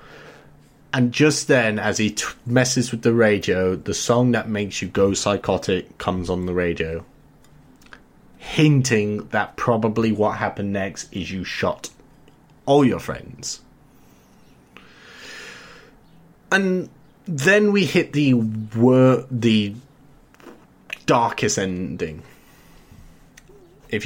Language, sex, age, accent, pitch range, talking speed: English, male, 30-49, British, 100-135 Hz, 100 wpm